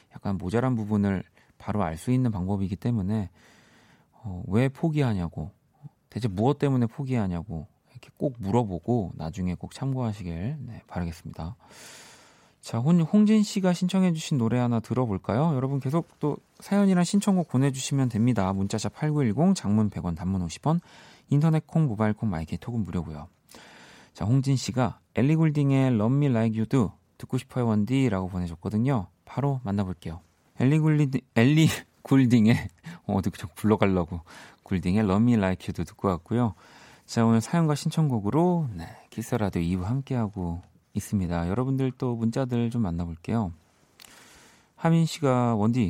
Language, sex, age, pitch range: Korean, male, 30-49, 95-135 Hz